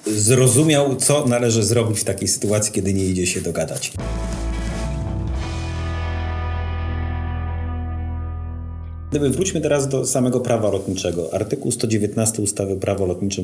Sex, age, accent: male, 40-59, Polish